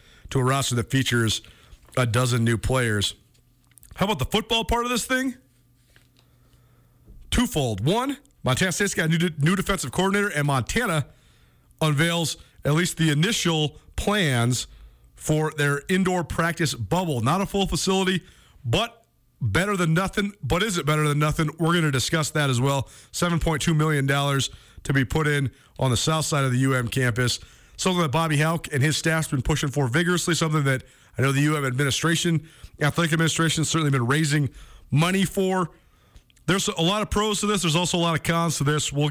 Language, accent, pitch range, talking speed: English, American, 125-165 Hz, 180 wpm